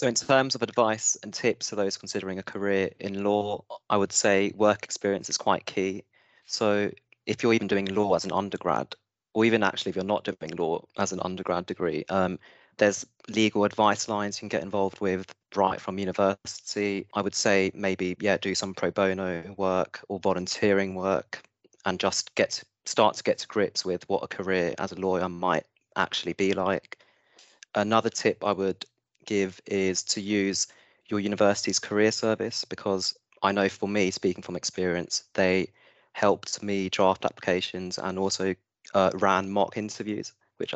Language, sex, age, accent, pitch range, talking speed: English, male, 30-49, British, 95-105 Hz, 175 wpm